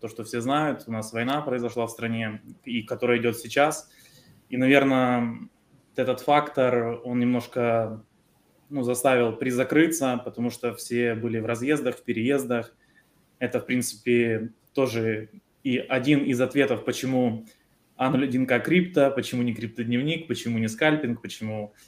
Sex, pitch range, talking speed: male, 120-150 Hz, 135 wpm